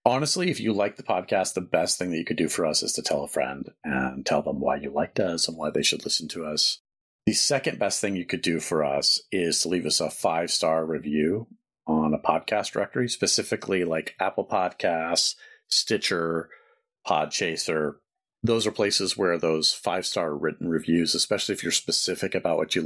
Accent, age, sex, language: American, 40-59, male, English